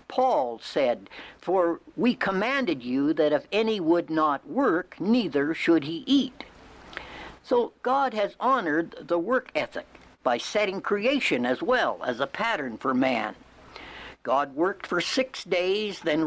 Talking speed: 145 wpm